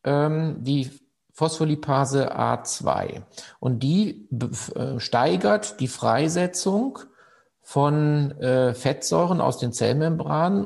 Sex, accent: male, German